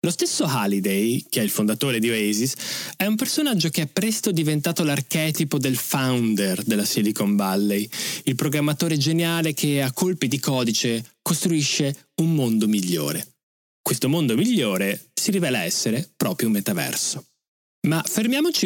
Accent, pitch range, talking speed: native, 110-170 Hz, 145 wpm